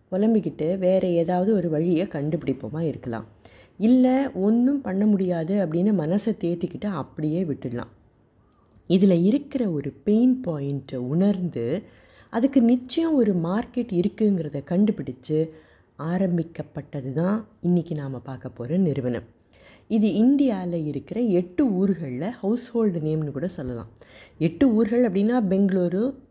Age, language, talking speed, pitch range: 30-49, Tamil, 110 wpm, 150-220 Hz